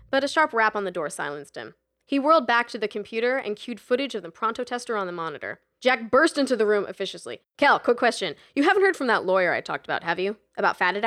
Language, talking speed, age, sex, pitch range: English, 255 wpm, 20-39, female, 190-265 Hz